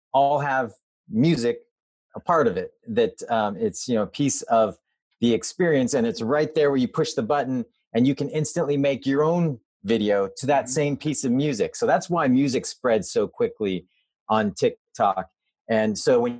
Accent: American